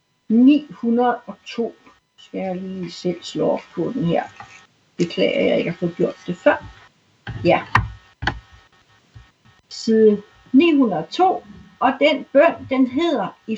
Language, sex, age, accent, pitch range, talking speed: Danish, female, 60-79, native, 185-260 Hz, 130 wpm